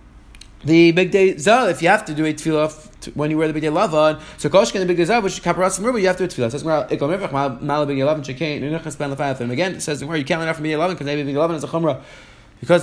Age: 30-49